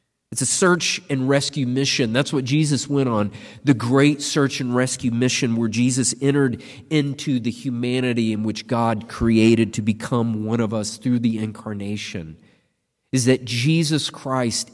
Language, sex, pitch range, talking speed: English, male, 120-145 Hz, 160 wpm